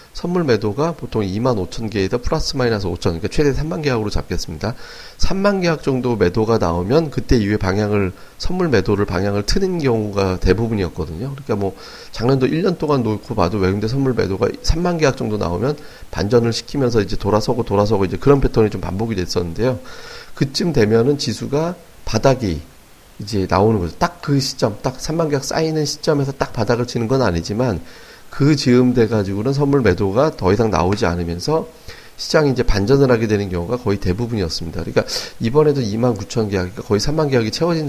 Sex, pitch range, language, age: male, 100-140 Hz, Korean, 40-59